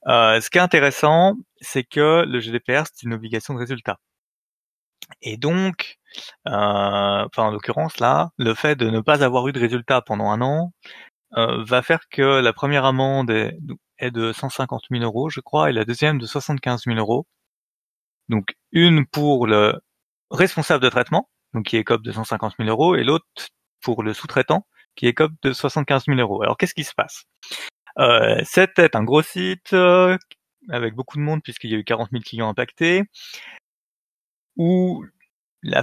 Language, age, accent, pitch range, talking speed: French, 30-49, French, 120-155 Hz, 180 wpm